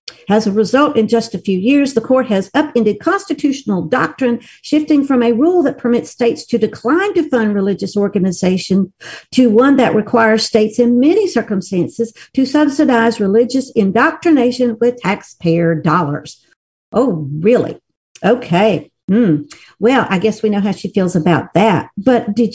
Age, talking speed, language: 60-79, 155 wpm, English